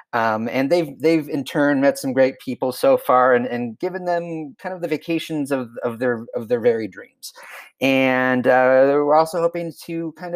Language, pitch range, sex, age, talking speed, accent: English, 130-185 Hz, male, 30-49, 195 wpm, American